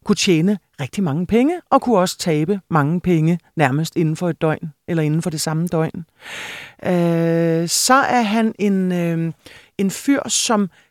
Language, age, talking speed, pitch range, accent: Danish, 40-59, 170 wpm, 170-210 Hz, native